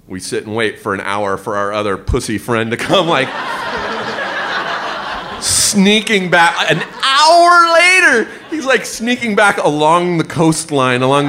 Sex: male